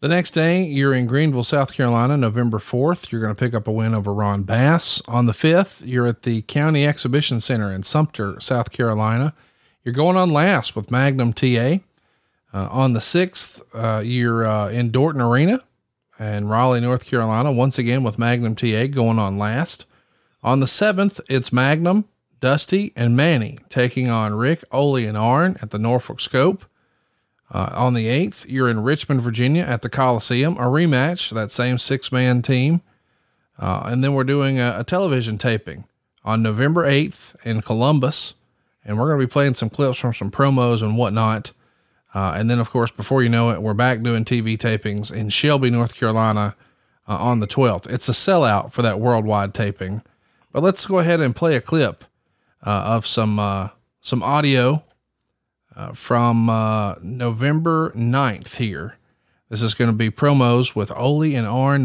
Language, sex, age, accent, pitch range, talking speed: English, male, 40-59, American, 110-140 Hz, 180 wpm